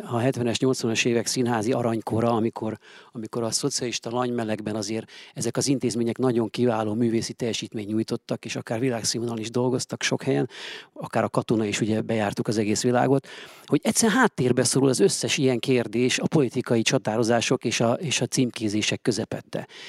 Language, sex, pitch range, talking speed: Hungarian, male, 120-140 Hz, 165 wpm